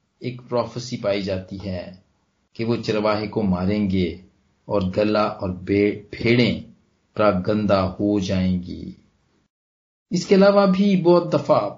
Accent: native